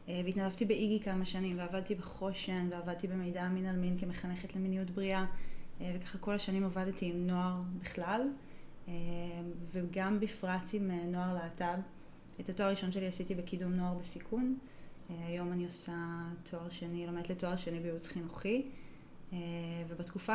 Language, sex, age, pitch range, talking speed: Hebrew, female, 20-39, 175-190 Hz, 135 wpm